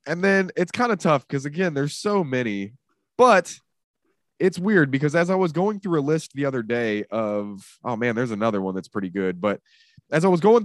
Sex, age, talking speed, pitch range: male, 20-39, 220 wpm, 115-170 Hz